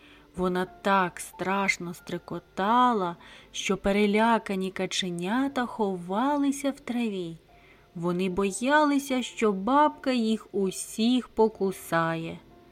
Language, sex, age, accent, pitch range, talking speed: Ukrainian, female, 30-49, native, 180-240 Hz, 80 wpm